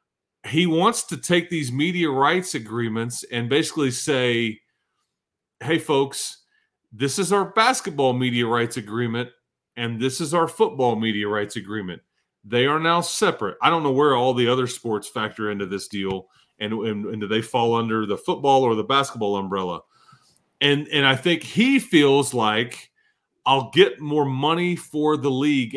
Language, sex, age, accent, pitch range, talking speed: English, male, 40-59, American, 120-165 Hz, 165 wpm